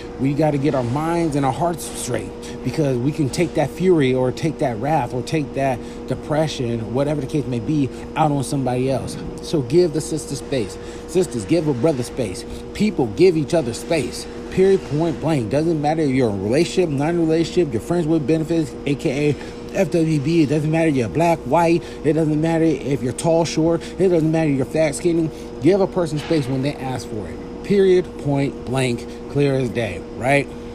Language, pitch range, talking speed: English, 120-155 Hz, 200 wpm